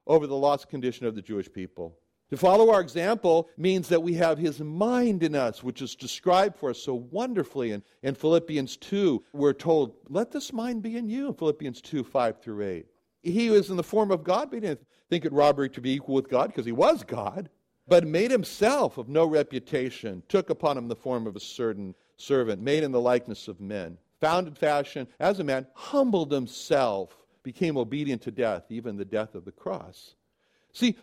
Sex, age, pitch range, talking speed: male, 60-79, 125-185 Hz, 200 wpm